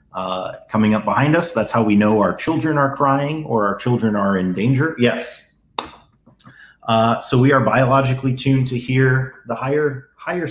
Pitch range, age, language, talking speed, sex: 105-135 Hz, 30-49, English, 175 wpm, male